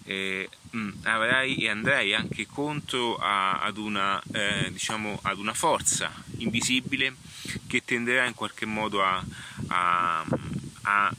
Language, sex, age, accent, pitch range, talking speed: Italian, male, 30-49, native, 100-120 Hz, 95 wpm